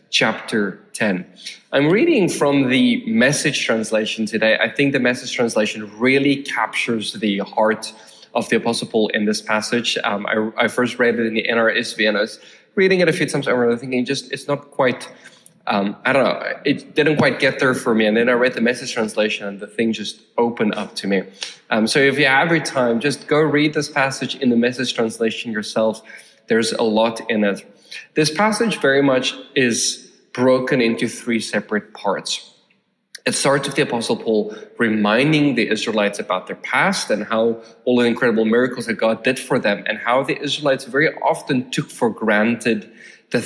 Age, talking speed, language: 20-39, 195 wpm, English